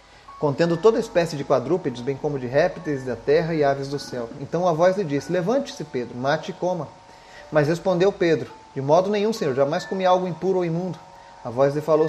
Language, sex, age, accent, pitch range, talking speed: Portuguese, male, 30-49, Brazilian, 140-190 Hz, 215 wpm